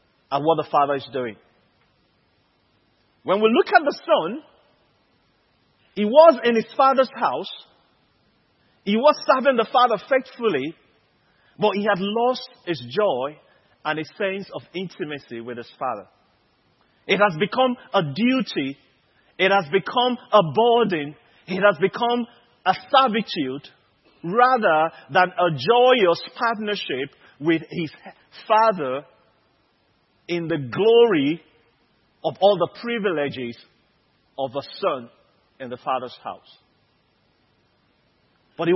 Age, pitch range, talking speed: 40-59, 155-230 Hz, 120 wpm